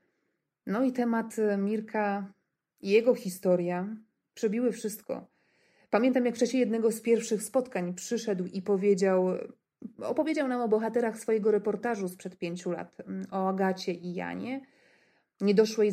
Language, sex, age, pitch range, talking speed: Polish, female, 30-49, 195-235 Hz, 125 wpm